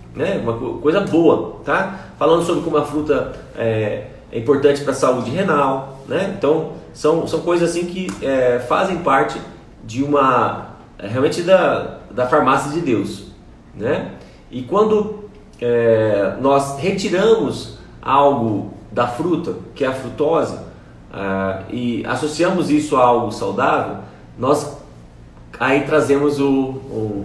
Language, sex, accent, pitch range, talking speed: Portuguese, male, Brazilian, 115-155 Hz, 115 wpm